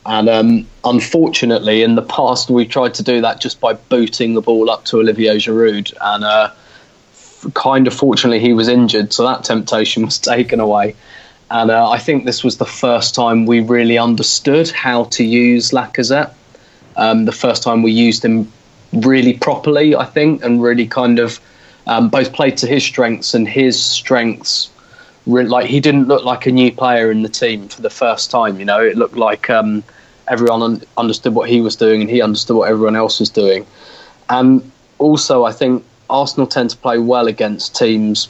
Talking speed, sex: 190 wpm, male